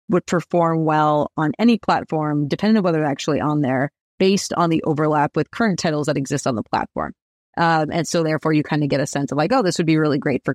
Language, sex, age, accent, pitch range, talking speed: English, female, 30-49, American, 155-200 Hz, 250 wpm